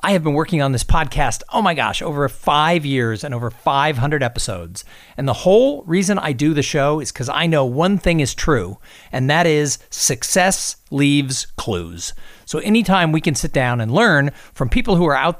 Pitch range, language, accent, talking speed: 130-185 Hz, English, American, 205 wpm